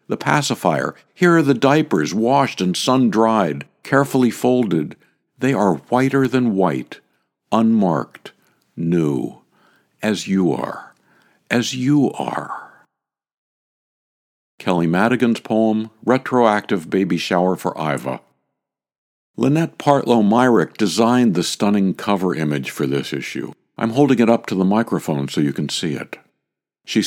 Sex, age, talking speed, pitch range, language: male, 60-79, 120 wpm, 85-120 Hz, English